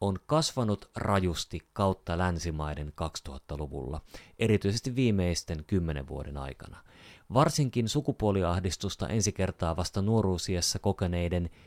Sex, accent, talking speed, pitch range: male, native, 95 wpm, 90-120 Hz